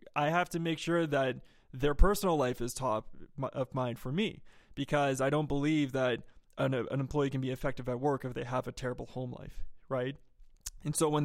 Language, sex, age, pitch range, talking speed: English, male, 20-39, 130-150 Hz, 210 wpm